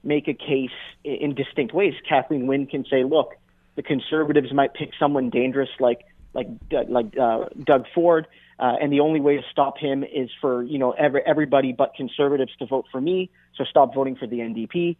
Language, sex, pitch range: English, male, 125-145 Hz